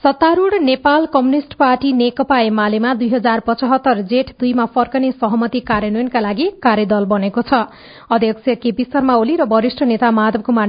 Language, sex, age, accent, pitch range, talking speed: English, female, 40-59, Indian, 225-270 Hz, 140 wpm